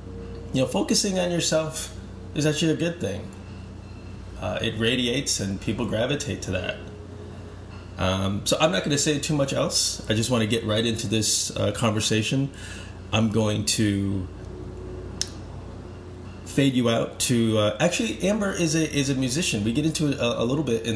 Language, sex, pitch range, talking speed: English, male, 95-120 Hz, 180 wpm